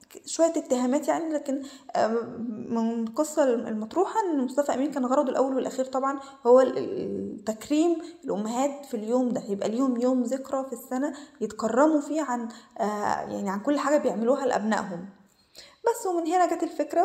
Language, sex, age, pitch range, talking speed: Arabic, female, 20-39, 215-275 Hz, 145 wpm